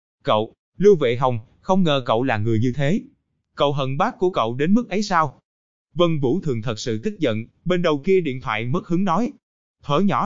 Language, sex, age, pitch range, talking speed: Vietnamese, male, 20-39, 130-185 Hz, 215 wpm